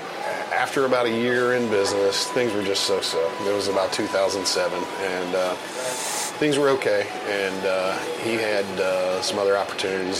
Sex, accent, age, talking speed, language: male, American, 30-49, 160 wpm, English